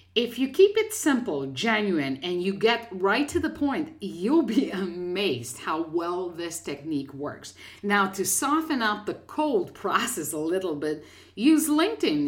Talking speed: 160 wpm